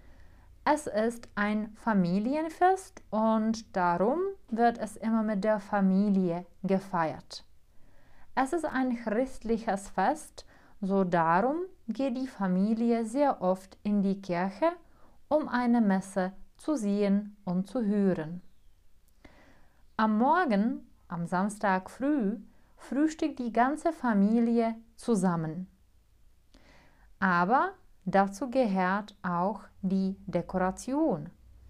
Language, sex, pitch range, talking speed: Czech, female, 185-255 Hz, 95 wpm